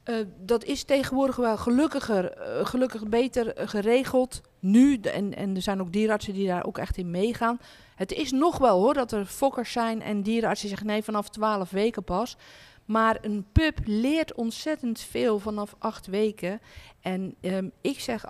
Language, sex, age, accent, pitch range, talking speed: Dutch, female, 50-69, Dutch, 195-240 Hz, 175 wpm